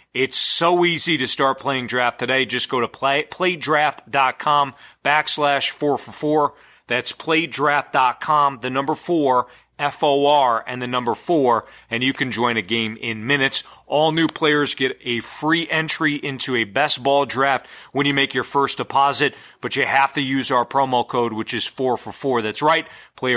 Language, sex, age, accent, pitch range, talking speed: English, male, 40-59, American, 125-150 Hz, 185 wpm